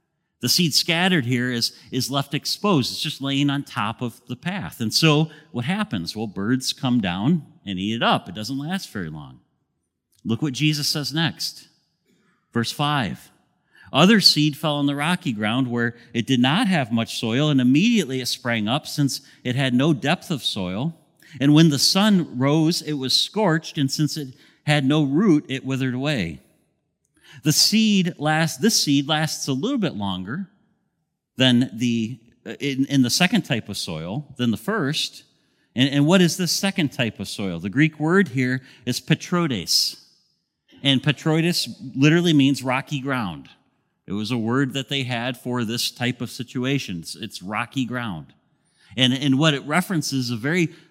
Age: 40-59